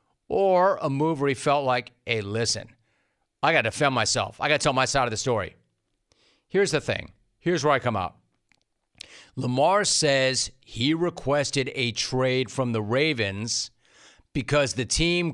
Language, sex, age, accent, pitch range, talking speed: English, male, 40-59, American, 120-165 Hz, 170 wpm